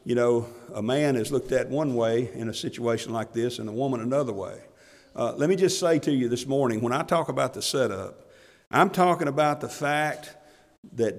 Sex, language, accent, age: male, English, American, 50-69